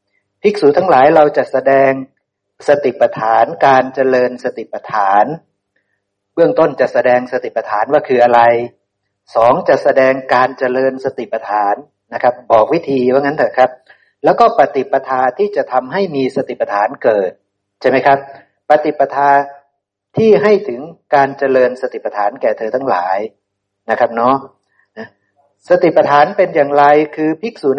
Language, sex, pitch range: Thai, male, 120-145 Hz